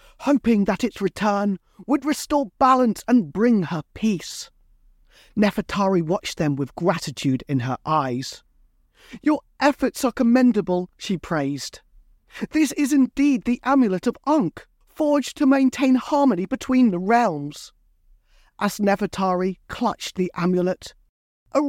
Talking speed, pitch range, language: 125 wpm, 175-265 Hz, English